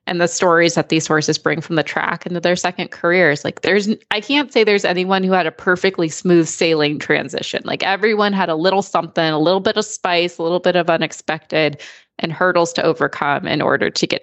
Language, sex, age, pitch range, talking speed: English, female, 20-39, 165-210 Hz, 220 wpm